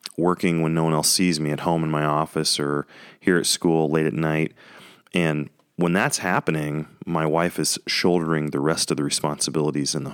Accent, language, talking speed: American, English, 200 wpm